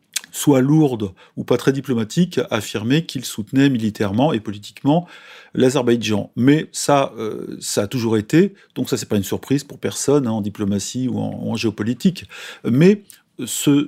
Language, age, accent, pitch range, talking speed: French, 40-59, French, 110-150 Hz, 160 wpm